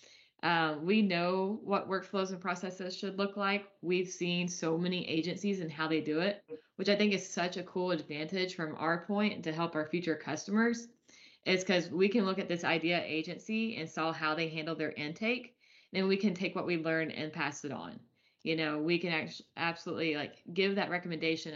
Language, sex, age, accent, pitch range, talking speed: English, female, 20-39, American, 155-180 Hz, 205 wpm